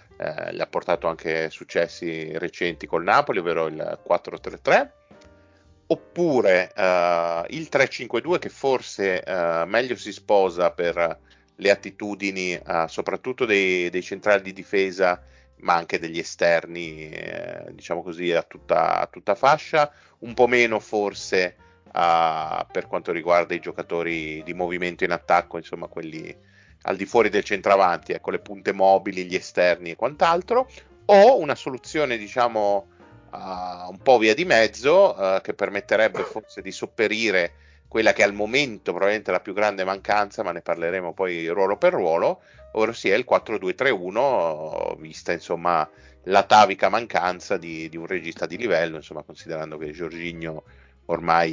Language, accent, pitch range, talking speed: Italian, native, 80-100 Hz, 150 wpm